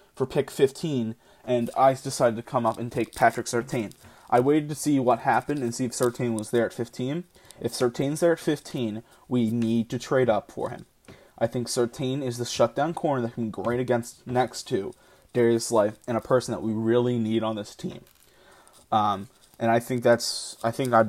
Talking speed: 200 wpm